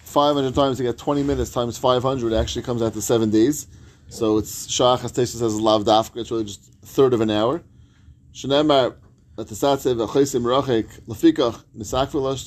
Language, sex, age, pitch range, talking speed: English, male, 30-49, 110-140 Hz, 185 wpm